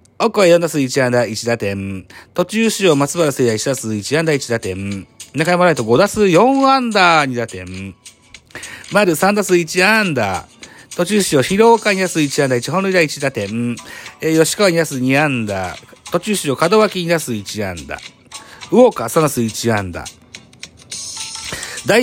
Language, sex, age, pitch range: Japanese, male, 40-59, 115-175 Hz